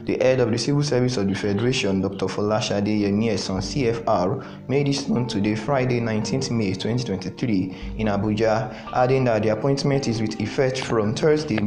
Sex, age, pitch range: male, 20-39, 105-125 Hz